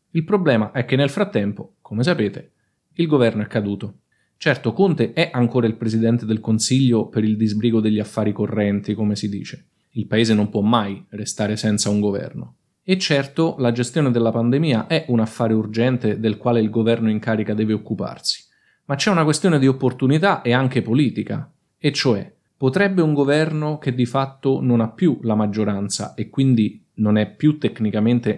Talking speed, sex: 180 wpm, male